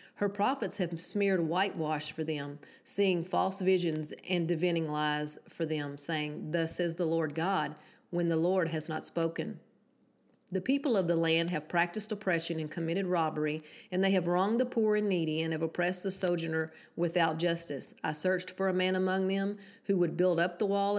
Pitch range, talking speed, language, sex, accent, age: 160-195 Hz, 190 wpm, English, female, American, 40-59